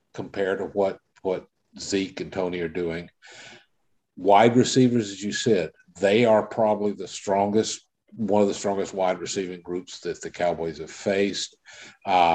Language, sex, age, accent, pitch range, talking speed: English, male, 50-69, American, 90-115 Hz, 150 wpm